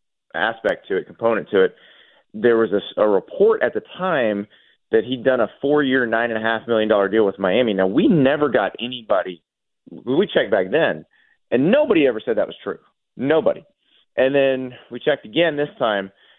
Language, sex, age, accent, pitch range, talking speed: English, male, 30-49, American, 105-140 Hz, 190 wpm